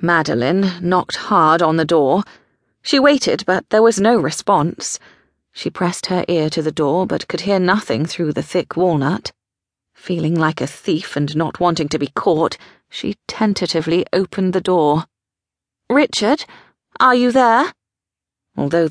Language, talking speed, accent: English, 150 wpm, British